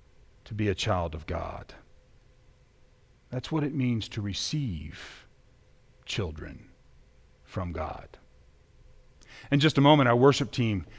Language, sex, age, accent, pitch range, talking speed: English, male, 40-59, American, 95-125 Hz, 120 wpm